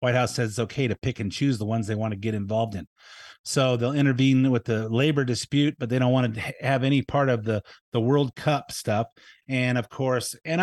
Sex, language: male, English